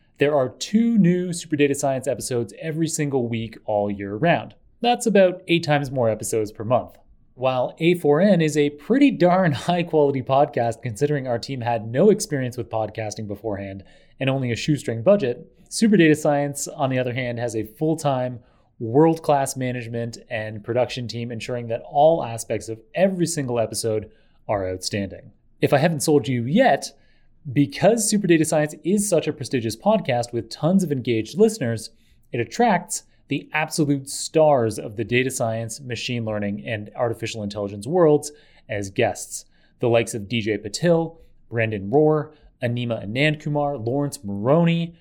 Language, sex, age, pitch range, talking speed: English, male, 30-49, 115-160 Hz, 155 wpm